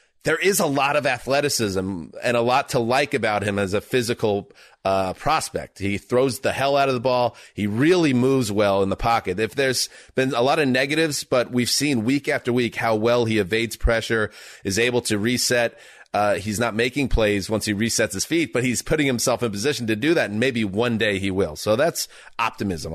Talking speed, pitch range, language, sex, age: 215 wpm, 95-120 Hz, English, male, 30-49